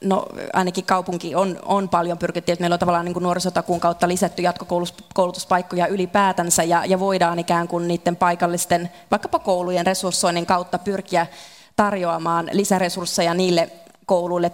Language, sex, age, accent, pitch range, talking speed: Finnish, female, 30-49, native, 170-190 Hz, 130 wpm